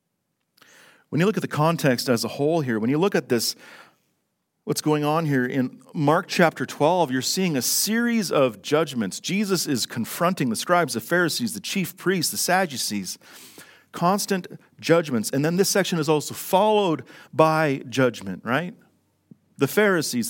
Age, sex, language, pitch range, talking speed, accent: 40-59, male, English, 125-175 Hz, 165 wpm, American